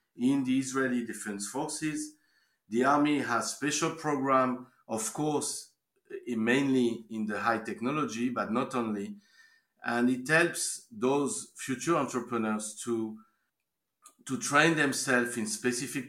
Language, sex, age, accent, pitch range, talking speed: Hebrew, male, 50-69, French, 110-140 Hz, 120 wpm